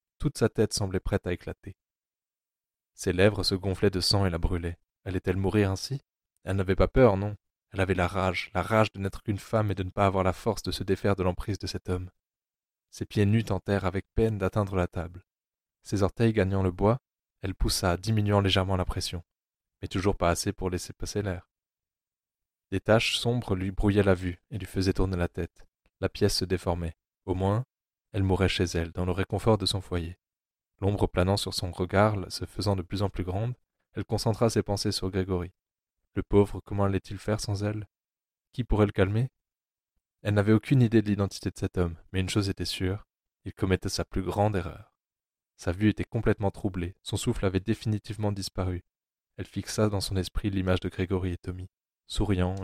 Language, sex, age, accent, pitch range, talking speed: French, male, 20-39, French, 90-105 Hz, 200 wpm